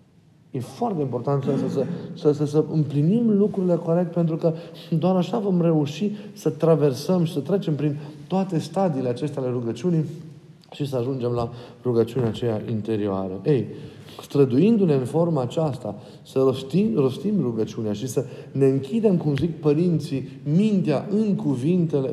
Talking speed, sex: 145 wpm, male